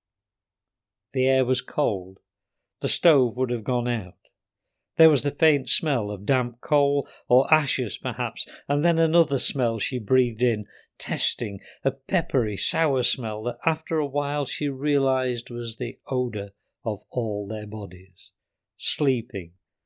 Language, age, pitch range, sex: English, 50-69, 110-150 Hz, male